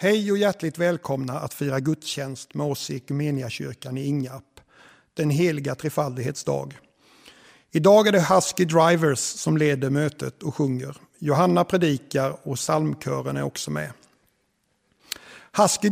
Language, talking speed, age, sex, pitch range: Swedish, 130 wpm, 60-79, male, 145-185 Hz